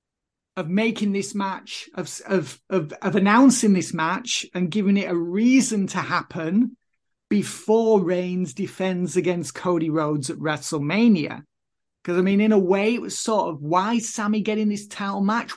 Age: 30-49